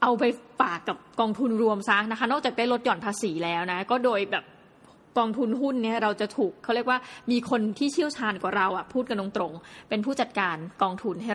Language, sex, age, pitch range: Thai, female, 20-39, 205-255 Hz